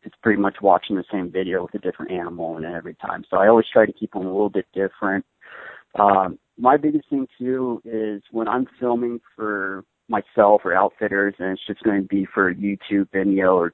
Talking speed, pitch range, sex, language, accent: 215 wpm, 95-115 Hz, male, English, American